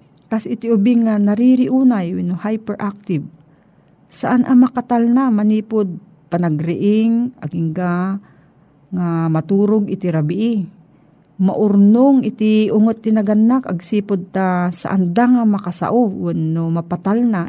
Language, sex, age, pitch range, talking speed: Filipino, female, 40-59, 165-215 Hz, 95 wpm